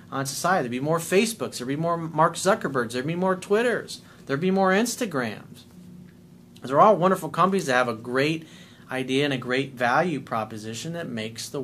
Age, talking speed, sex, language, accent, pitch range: 40-59, 185 wpm, male, English, American, 130-180 Hz